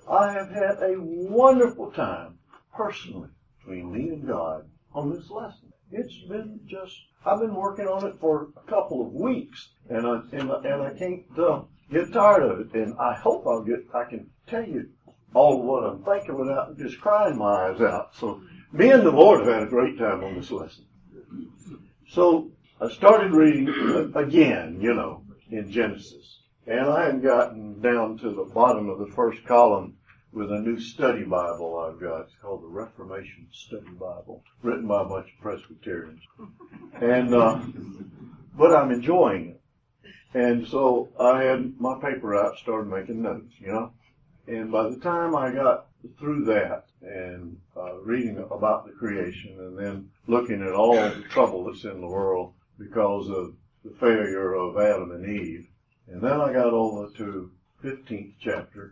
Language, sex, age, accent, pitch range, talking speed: English, male, 60-79, American, 100-150 Hz, 170 wpm